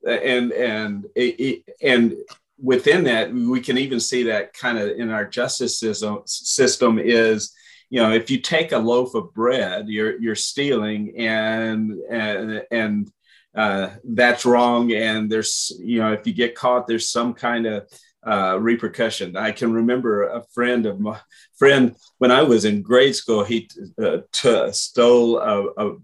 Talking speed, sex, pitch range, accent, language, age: 160 wpm, male, 110-125 Hz, American, English, 40-59